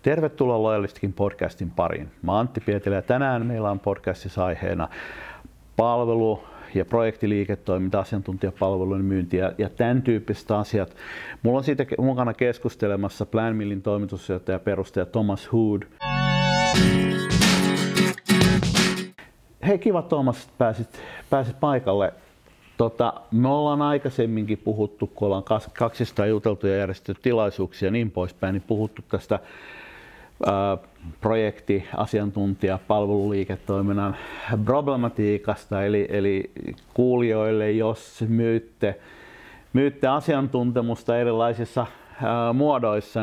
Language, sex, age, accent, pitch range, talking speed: Finnish, male, 50-69, native, 100-115 Hz, 100 wpm